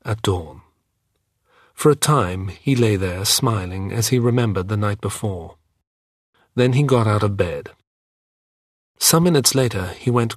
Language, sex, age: English, male, 40-59